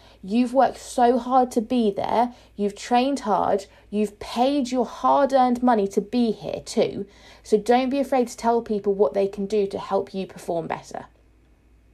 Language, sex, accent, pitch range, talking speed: English, female, British, 195-235 Hz, 175 wpm